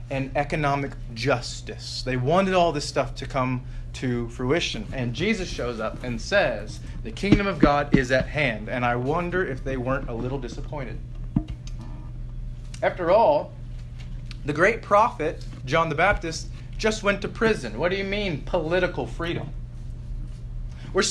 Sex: male